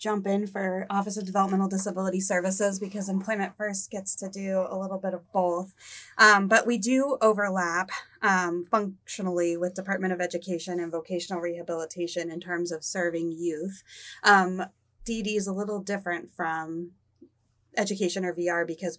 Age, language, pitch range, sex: 20-39, English, 170-200 Hz, female